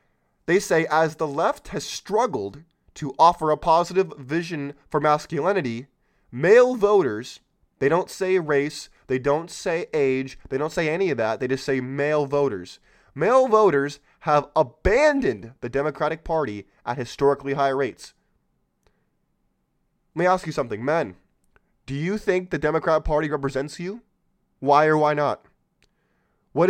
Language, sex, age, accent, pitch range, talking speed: English, male, 20-39, American, 140-170 Hz, 145 wpm